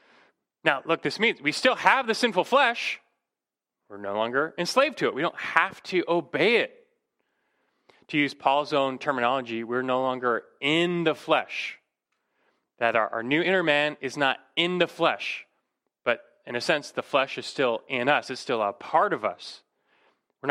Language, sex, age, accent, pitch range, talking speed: English, male, 30-49, American, 125-190 Hz, 180 wpm